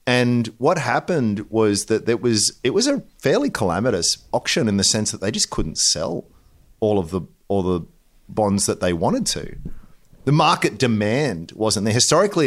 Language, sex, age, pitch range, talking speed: English, male, 30-49, 100-120 Hz, 180 wpm